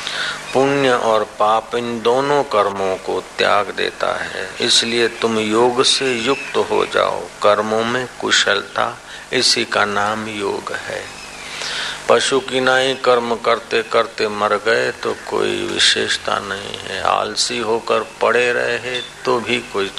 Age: 50-69